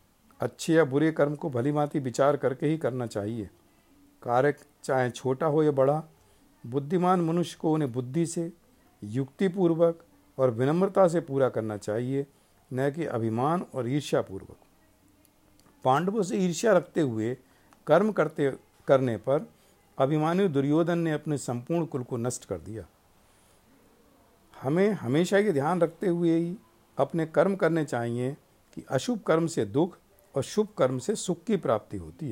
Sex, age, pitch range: male, 50-69, 120-160 Hz